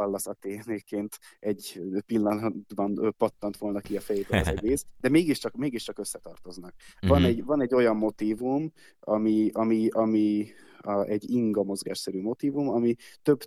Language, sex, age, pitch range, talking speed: Hungarian, male, 20-39, 100-110 Hz, 145 wpm